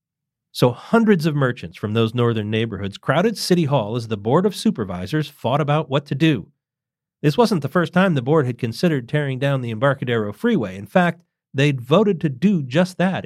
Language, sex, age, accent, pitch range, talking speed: English, male, 40-59, American, 120-160 Hz, 195 wpm